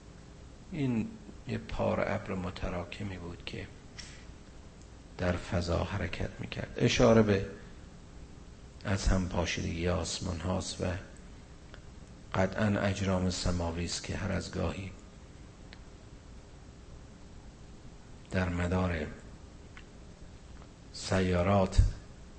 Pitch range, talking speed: 95-145 Hz, 75 wpm